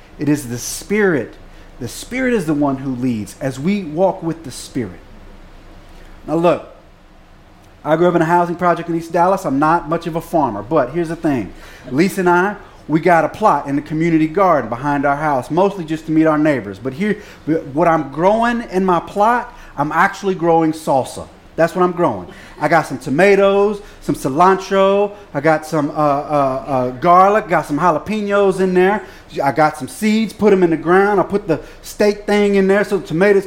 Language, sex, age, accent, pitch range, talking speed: English, male, 30-49, American, 155-200 Hz, 200 wpm